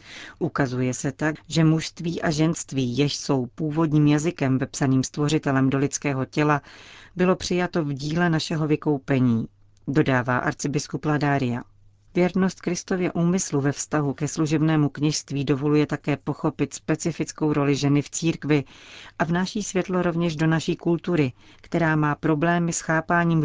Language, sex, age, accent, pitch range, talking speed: Czech, female, 40-59, native, 140-165 Hz, 140 wpm